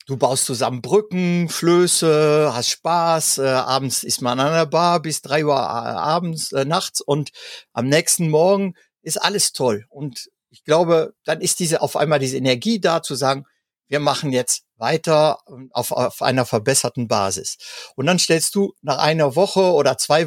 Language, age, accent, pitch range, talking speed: German, 50-69, German, 125-165 Hz, 170 wpm